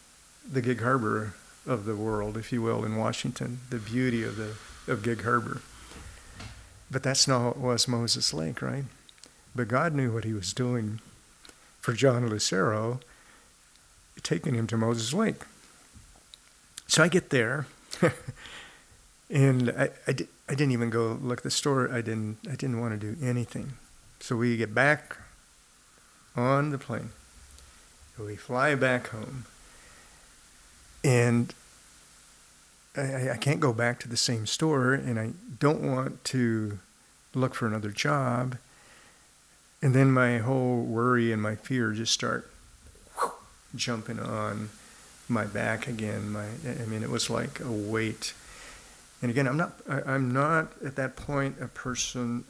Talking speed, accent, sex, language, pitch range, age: 145 wpm, American, male, English, 110-130 Hz, 50-69